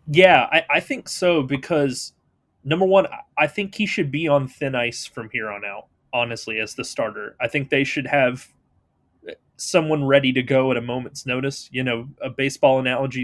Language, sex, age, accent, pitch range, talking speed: English, male, 30-49, American, 130-160 Hz, 190 wpm